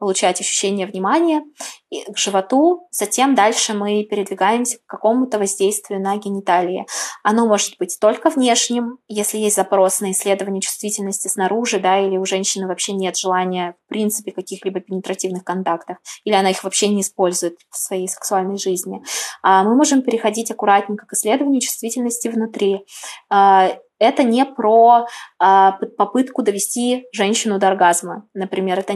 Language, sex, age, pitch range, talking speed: Russian, female, 20-39, 190-235 Hz, 135 wpm